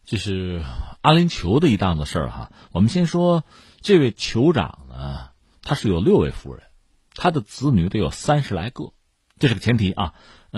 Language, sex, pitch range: Chinese, male, 80-120 Hz